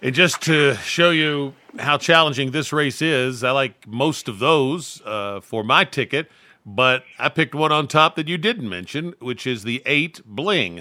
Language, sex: English, male